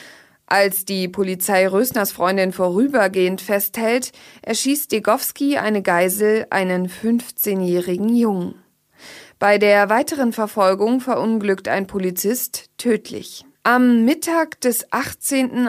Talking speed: 100 wpm